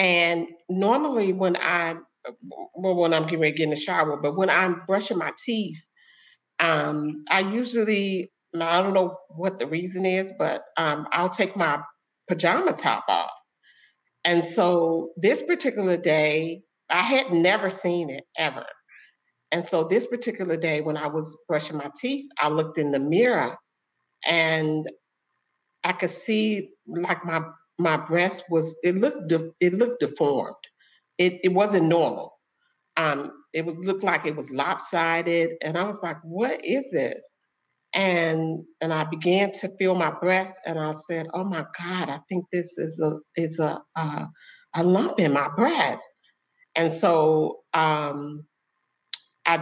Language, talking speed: English, 155 wpm